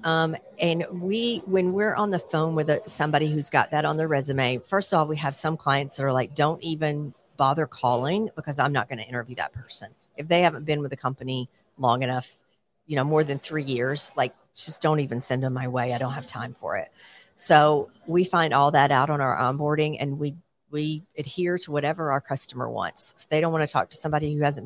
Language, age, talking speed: English, 50-69, 230 wpm